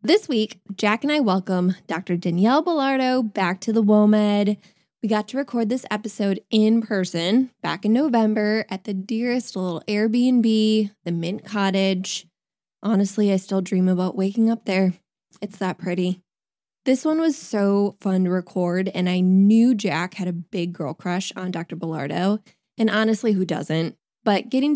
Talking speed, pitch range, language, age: 165 wpm, 190-235 Hz, English, 10-29